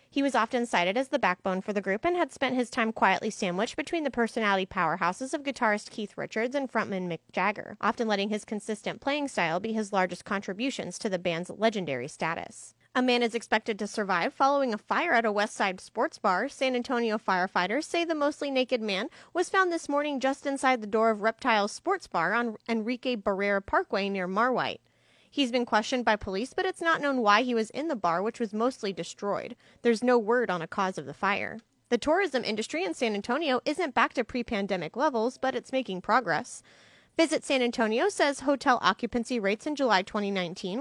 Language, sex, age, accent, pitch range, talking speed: English, female, 30-49, American, 205-270 Hz, 200 wpm